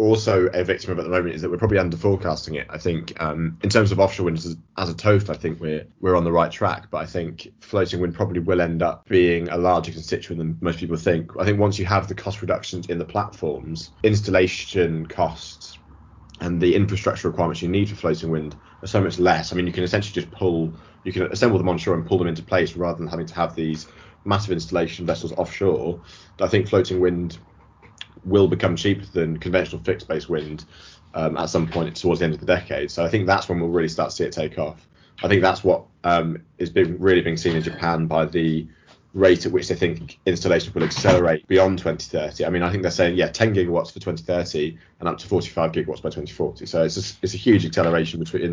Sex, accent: male, British